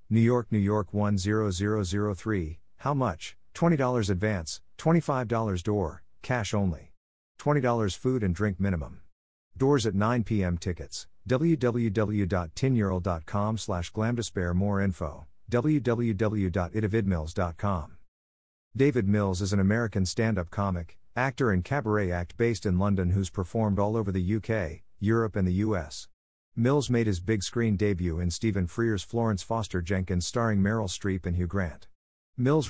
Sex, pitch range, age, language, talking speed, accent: male, 90-115 Hz, 50-69, English, 130 wpm, American